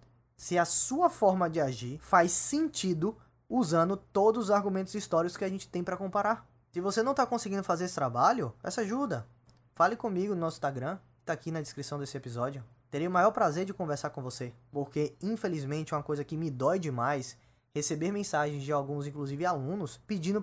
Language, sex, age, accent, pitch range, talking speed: Portuguese, male, 20-39, Brazilian, 140-185 Hz, 190 wpm